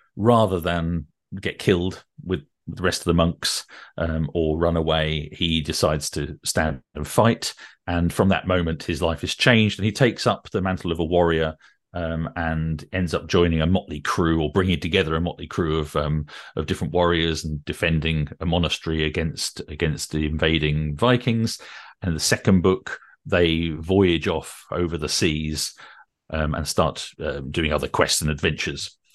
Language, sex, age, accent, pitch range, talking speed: English, male, 40-59, British, 80-95 Hz, 175 wpm